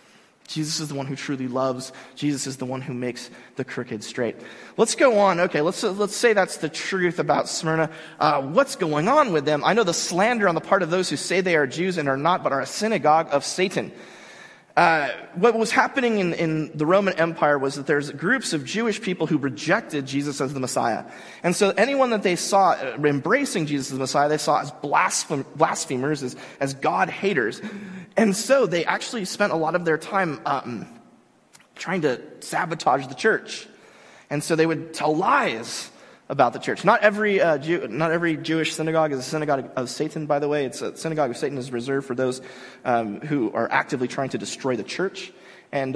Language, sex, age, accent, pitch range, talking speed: English, male, 30-49, American, 135-180 Hz, 205 wpm